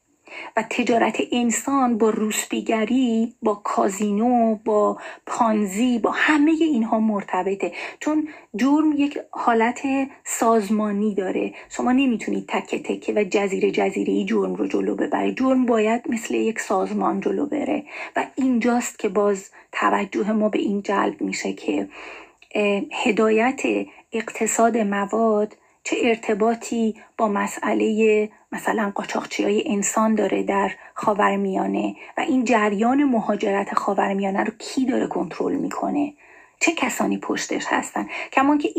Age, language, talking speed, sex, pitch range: 30-49, Persian, 120 wpm, female, 210-250 Hz